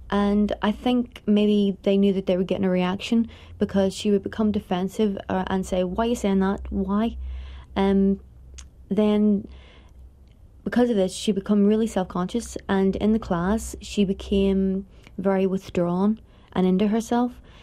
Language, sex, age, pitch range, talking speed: English, female, 30-49, 185-205 Hz, 155 wpm